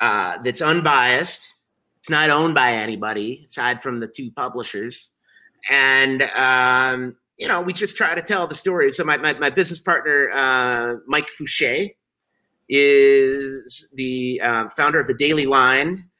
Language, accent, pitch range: English, American, 125-160 Hz